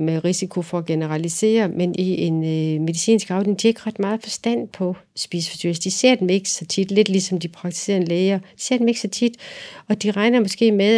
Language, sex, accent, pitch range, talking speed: Danish, female, native, 175-215 Hz, 215 wpm